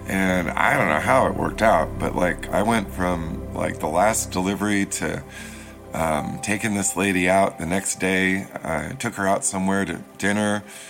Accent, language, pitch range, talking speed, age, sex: American, English, 85-100 Hz, 180 wpm, 50-69, male